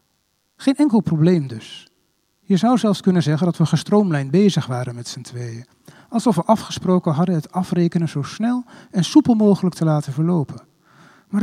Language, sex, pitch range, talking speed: Dutch, male, 145-195 Hz, 170 wpm